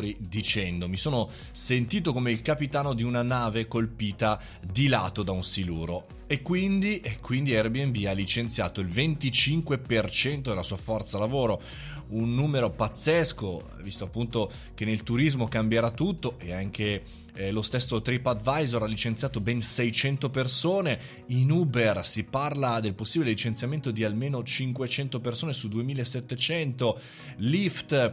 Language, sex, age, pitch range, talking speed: Italian, male, 20-39, 105-135 Hz, 135 wpm